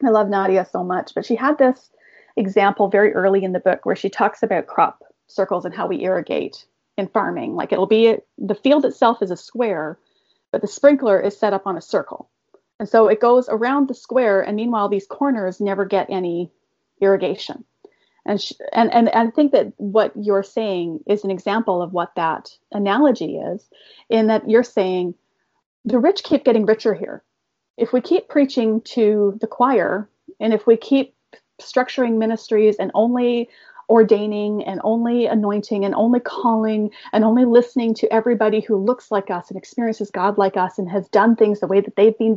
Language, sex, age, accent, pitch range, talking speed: English, female, 30-49, American, 200-245 Hz, 190 wpm